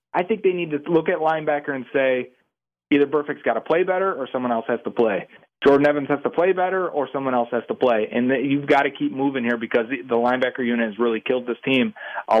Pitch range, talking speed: 120-155 Hz, 260 wpm